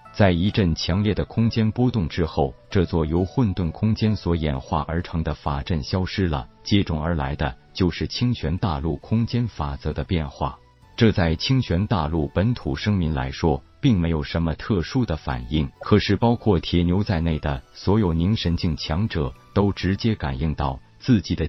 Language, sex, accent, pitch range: Chinese, male, native, 75-105 Hz